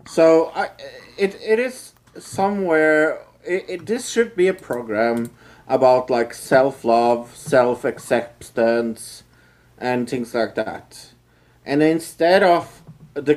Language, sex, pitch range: English, male, 115-145 Hz